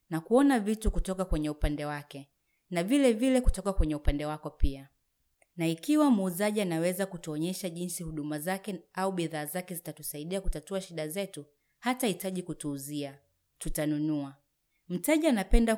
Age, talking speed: 30-49, 150 wpm